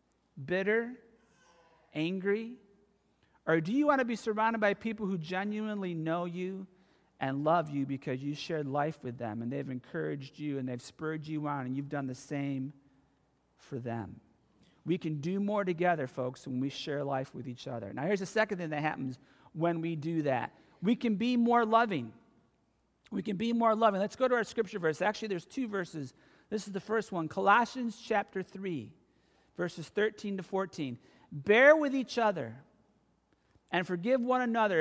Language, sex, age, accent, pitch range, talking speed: English, male, 40-59, American, 160-225 Hz, 180 wpm